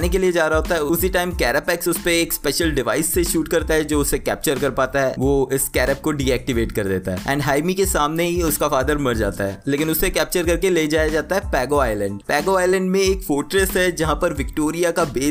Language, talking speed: Hindi, 90 wpm